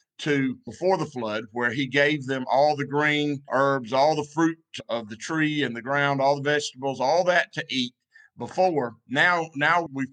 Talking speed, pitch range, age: 190 wpm, 130-160 Hz, 50-69